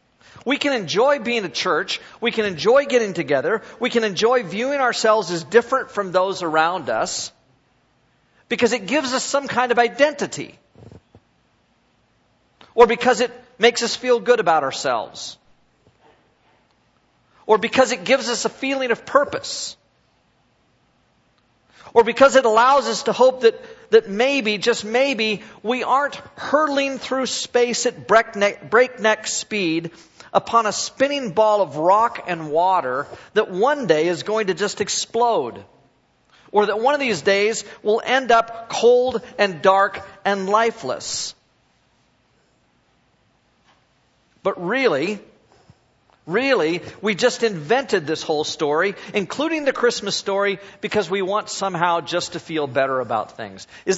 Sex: male